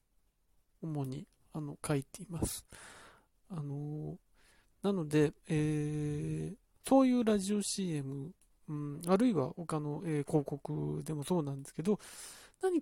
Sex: male